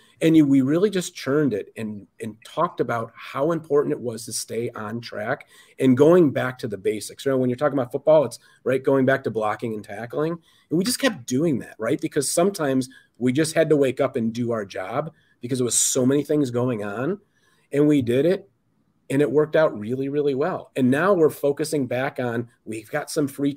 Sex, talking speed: male, 225 wpm